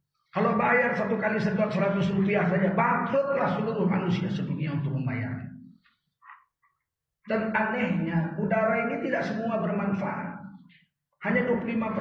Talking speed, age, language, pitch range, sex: 105 wpm, 40-59, Indonesian, 155-215 Hz, male